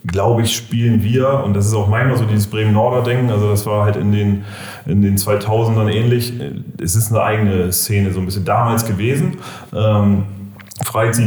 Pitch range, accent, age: 100-120 Hz, German, 30-49